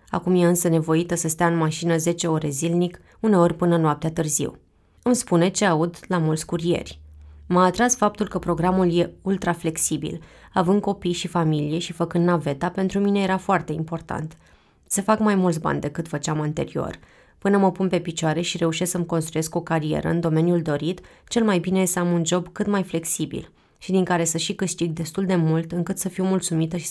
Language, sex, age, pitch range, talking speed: Romanian, female, 20-39, 165-185 Hz, 200 wpm